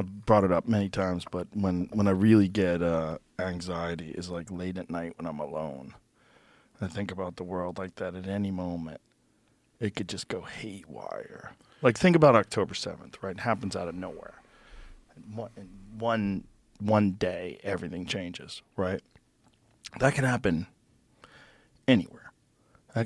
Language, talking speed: English, 155 wpm